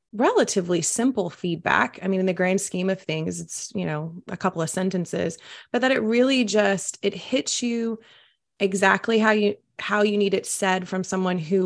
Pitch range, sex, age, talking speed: 180-210 Hz, female, 30-49, 190 wpm